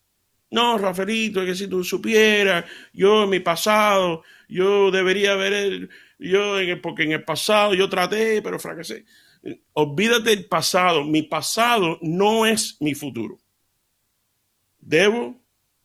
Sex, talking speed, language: male, 125 wpm, Spanish